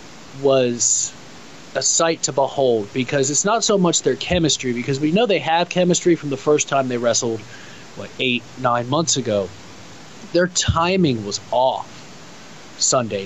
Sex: male